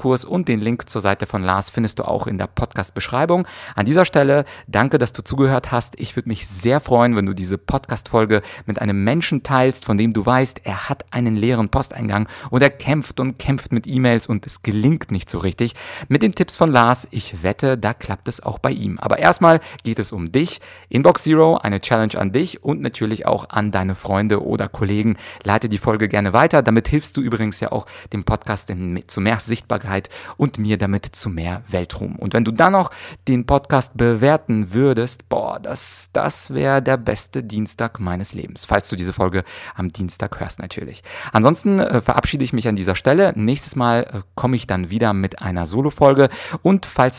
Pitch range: 100-130 Hz